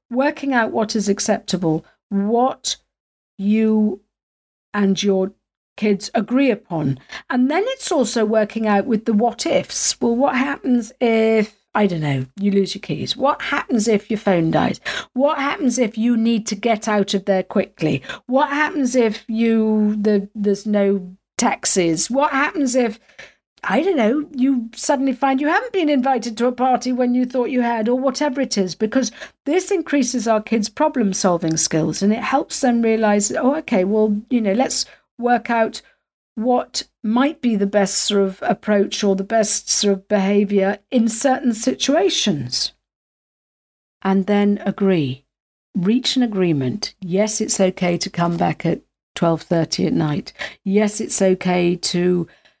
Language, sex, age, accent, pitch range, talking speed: English, female, 50-69, British, 195-255 Hz, 160 wpm